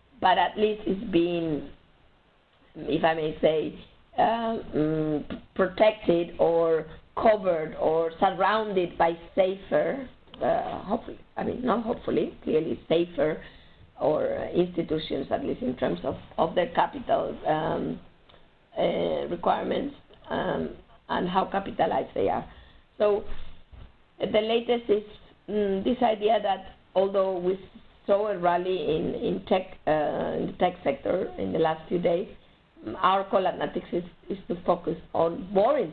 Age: 50-69